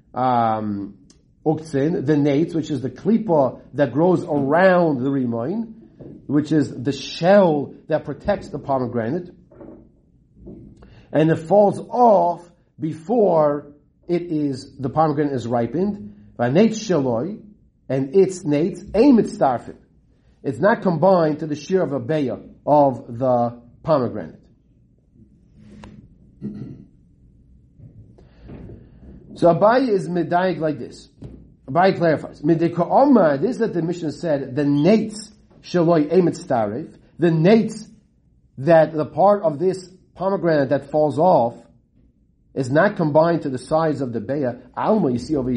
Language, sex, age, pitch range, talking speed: English, male, 50-69, 140-175 Hz, 120 wpm